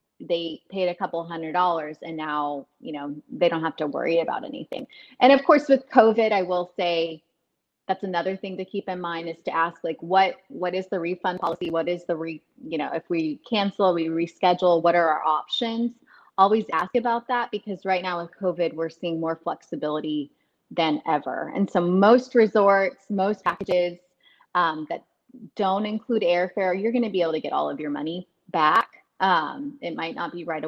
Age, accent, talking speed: 30-49, American, 200 wpm